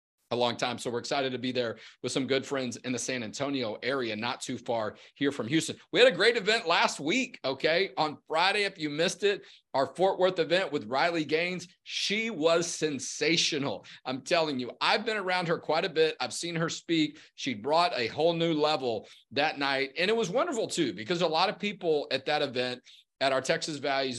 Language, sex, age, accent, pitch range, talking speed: English, male, 40-59, American, 135-180 Hz, 215 wpm